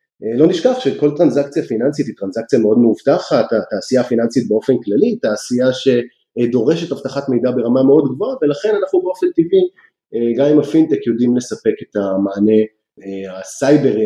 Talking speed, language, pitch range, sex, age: 135 wpm, Hebrew, 115-180 Hz, male, 30-49